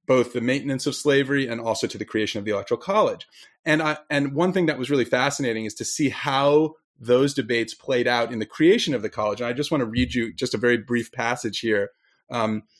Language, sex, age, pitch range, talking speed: English, male, 30-49, 110-150 Hz, 240 wpm